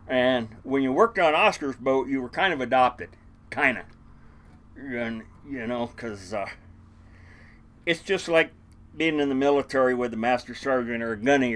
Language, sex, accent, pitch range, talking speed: English, male, American, 110-150 Hz, 165 wpm